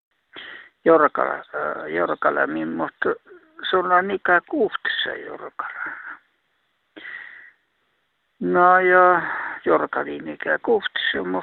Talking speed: 90 wpm